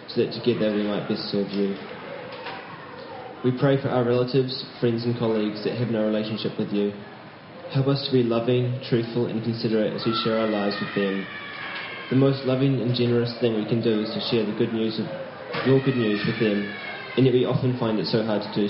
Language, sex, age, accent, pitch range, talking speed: English, male, 20-39, Australian, 105-125 Hz, 220 wpm